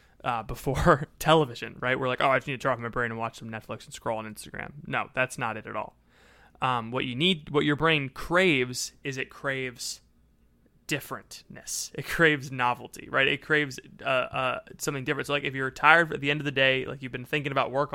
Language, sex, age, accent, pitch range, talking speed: English, male, 20-39, American, 125-155 Hz, 225 wpm